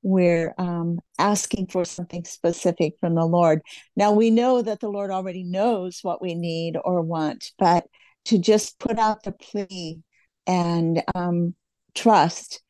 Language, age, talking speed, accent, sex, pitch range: English, 50-69, 150 wpm, American, female, 180-215 Hz